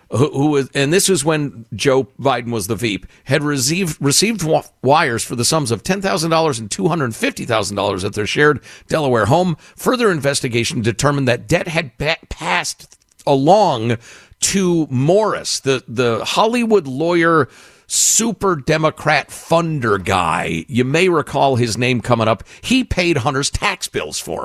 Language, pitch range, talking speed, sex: English, 110-160 Hz, 160 wpm, male